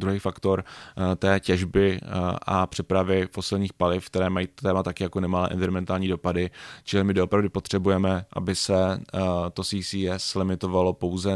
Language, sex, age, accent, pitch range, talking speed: Czech, male, 20-39, native, 90-100 Hz, 135 wpm